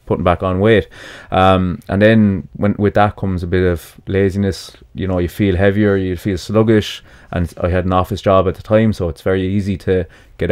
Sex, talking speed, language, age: male, 215 wpm, English, 20-39